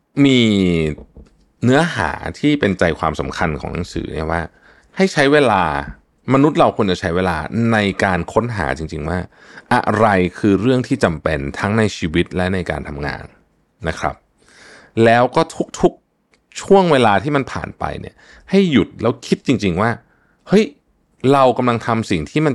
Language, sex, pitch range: Thai, male, 85-130 Hz